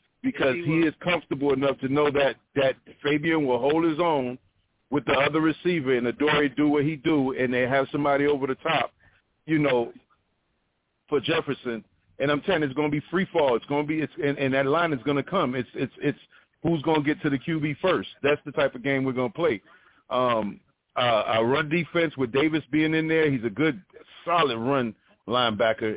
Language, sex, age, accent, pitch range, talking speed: English, male, 40-59, American, 120-150 Hz, 215 wpm